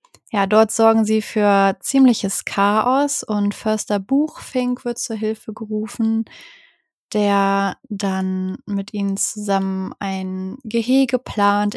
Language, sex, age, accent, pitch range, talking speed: German, female, 20-39, German, 200-240 Hz, 110 wpm